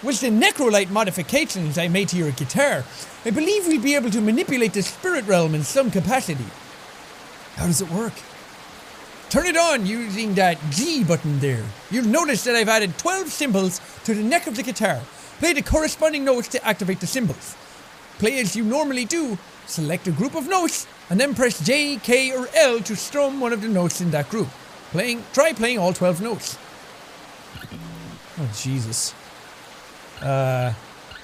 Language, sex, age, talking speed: English, male, 30-49, 175 wpm